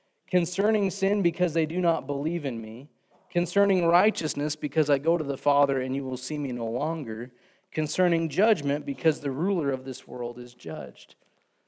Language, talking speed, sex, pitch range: English, 175 wpm, male, 150-190 Hz